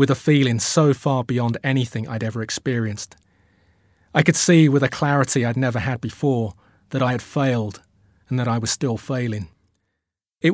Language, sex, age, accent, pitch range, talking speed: English, male, 30-49, British, 100-140 Hz, 175 wpm